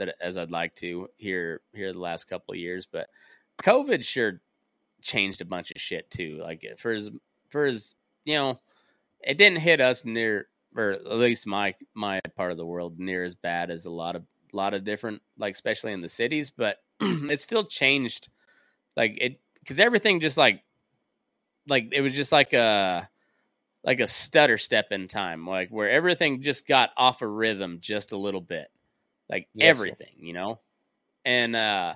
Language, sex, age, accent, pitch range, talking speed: English, male, 20-39, American, 100-145 Hz, 180 wpm